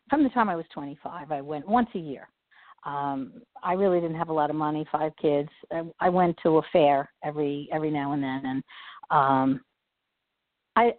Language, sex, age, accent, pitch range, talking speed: English, female, 50-69, American, 160-210 Hz, 195 wpm